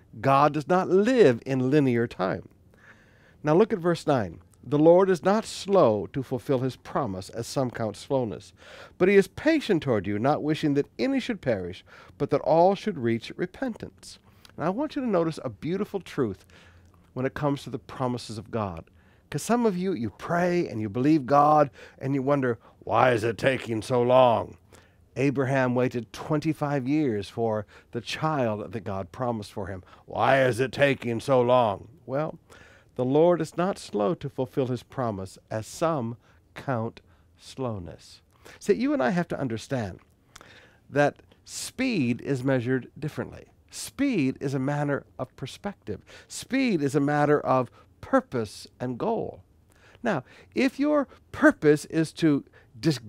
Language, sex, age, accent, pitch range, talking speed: English, male, 60-79, American, 110-160 Hz, 165 wpm